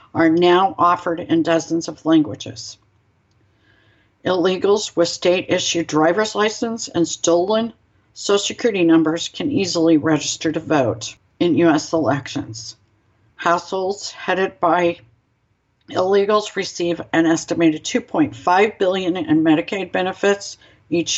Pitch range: 145-185 Hz